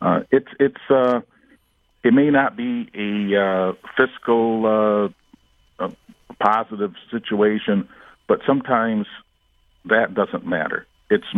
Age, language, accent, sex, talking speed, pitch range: 50-69, English, American, male, 105 wpm, 95-125 Hz